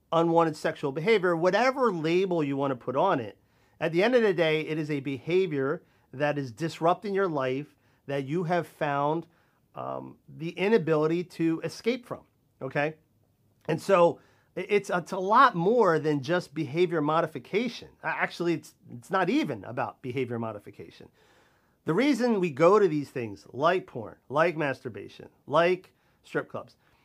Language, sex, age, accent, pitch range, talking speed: English, male, 40-59, American, 140-180 Hz, 155 wpm